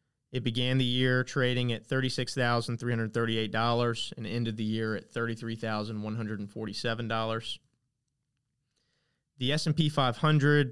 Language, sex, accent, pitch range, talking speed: English, male, American, 115-135 Hz, 90 wpm